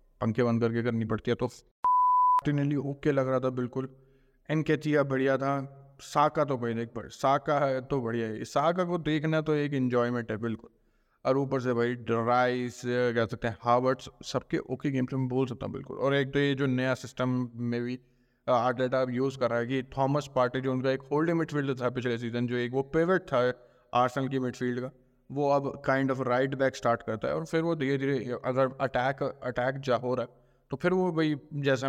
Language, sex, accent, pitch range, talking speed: Hindi, male, native, 125-140 Hz, 210 wpm